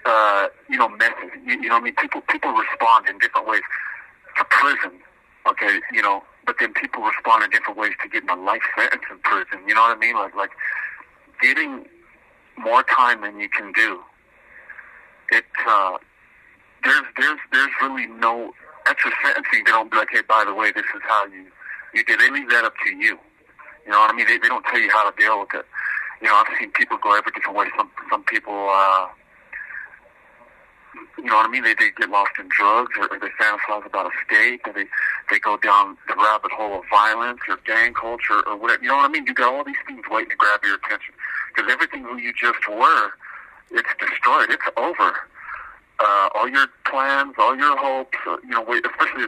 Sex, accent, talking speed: male, American, 210 wpm